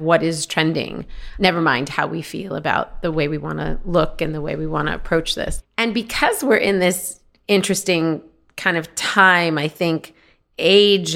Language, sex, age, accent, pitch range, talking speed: English, female, 30-49, American, 155-190 Hz, 190 wpm